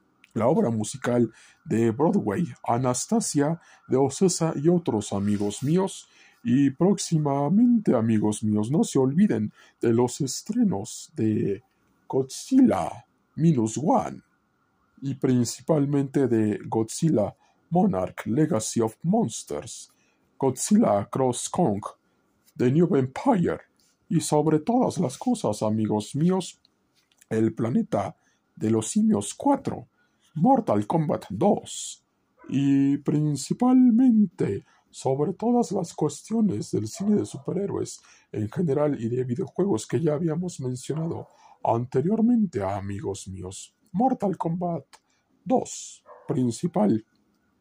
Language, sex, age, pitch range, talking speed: Spanish, male, 50-69, 115-175 Hz, 105 wpm